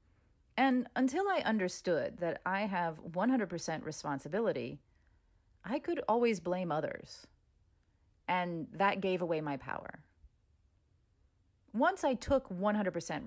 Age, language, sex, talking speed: 30-49, English, female, 110 wpm